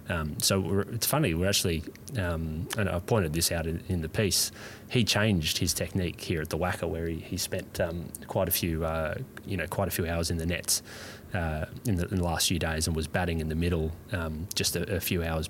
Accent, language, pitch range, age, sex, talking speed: Australian, English, 80-100 Hz, 20-39, male, 250 wpm